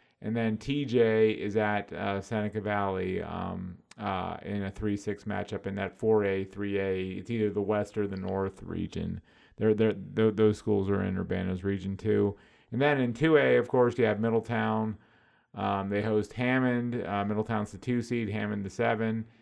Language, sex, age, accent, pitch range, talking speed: English, male, 30-49, American, 100-115 Hz, 175 wpm